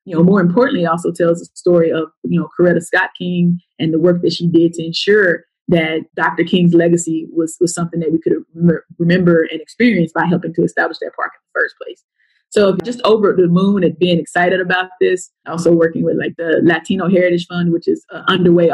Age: 20-39